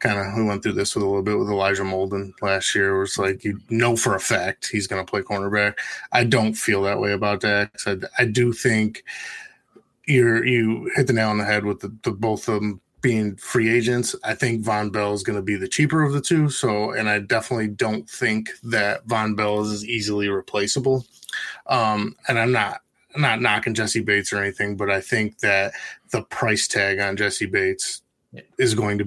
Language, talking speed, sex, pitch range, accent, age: English, 215 wpm, male, 100-115 Hz, American, 20-39